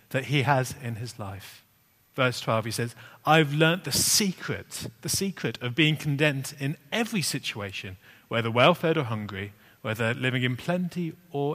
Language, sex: English, male